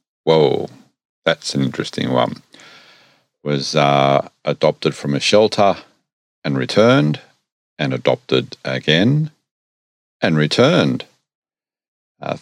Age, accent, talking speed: 50-69, Australian, 90 wpm